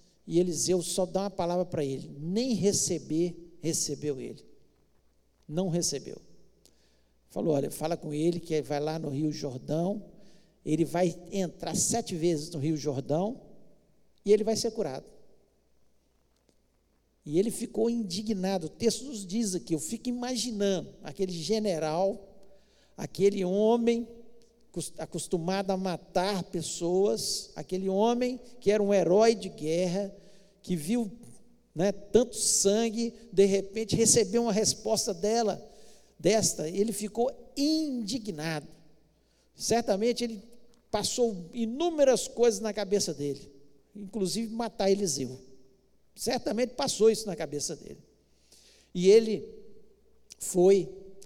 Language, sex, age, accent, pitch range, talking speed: Portuguese, male, 60-79, Brazilian, 160-220 Hz, 120 wpm